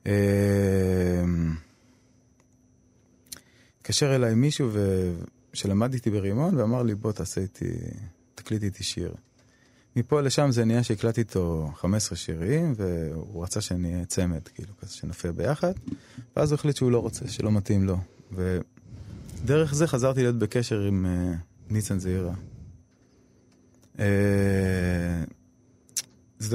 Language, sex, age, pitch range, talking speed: Hebrew, male, 20-39, 100-125 Hz, 110 wpm